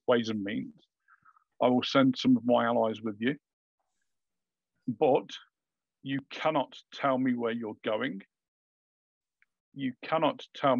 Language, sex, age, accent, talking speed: English, male, 50-69, British, 130 wpm